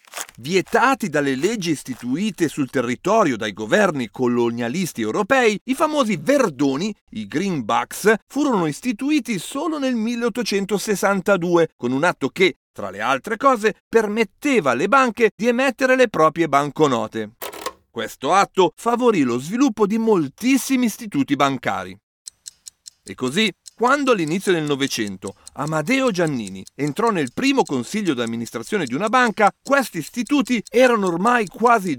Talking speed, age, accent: 125 wpm, 40-59, native